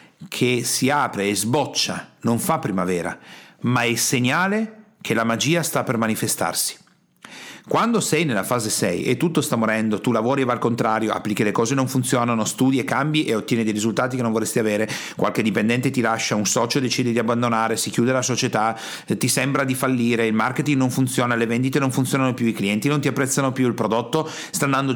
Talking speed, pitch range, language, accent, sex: 205 wpm, 115-165 Hz, Italian, native, male